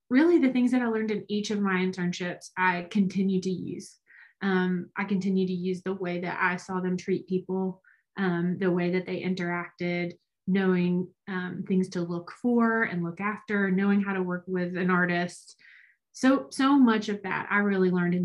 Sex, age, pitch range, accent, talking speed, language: female, 20-39, 180-210 Hz, American, 195 wpm, English